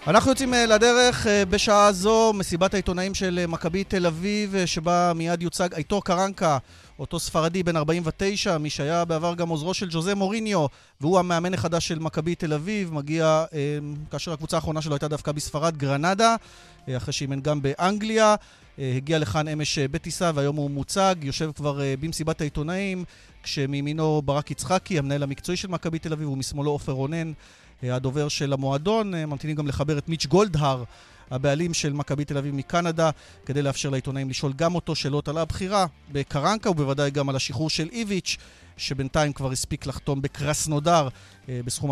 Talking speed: 155 wpm